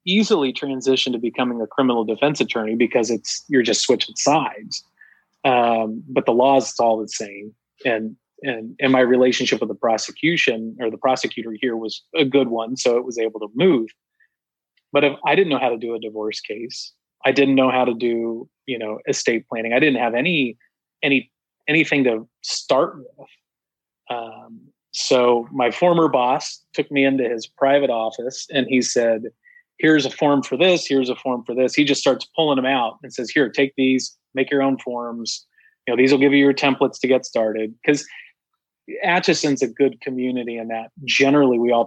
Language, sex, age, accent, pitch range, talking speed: English, male, 30-49, American, 115-135 Hz, 190 wpm